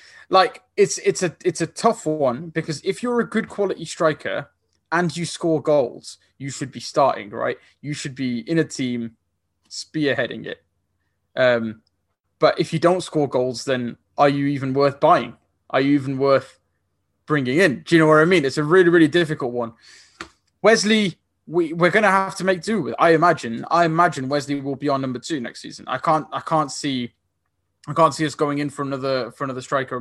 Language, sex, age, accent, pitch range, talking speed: English, male, 20-39, British, 125-165 Hz, 200 wpm